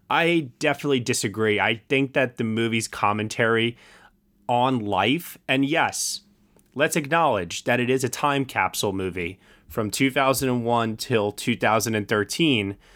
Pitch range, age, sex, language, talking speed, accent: 105-135 Hz, 20-39, male, English, 120 wpm, American